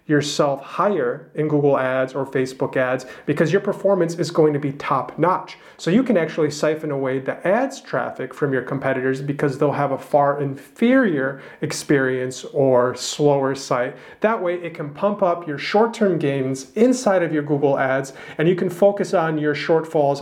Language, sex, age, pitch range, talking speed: English, male, 30-49, 140-175 Hz, 180 wpm